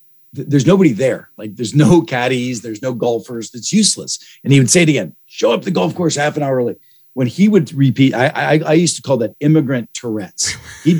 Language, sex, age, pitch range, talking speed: English, male, 50-69, 110-145 Hz, 225 wpm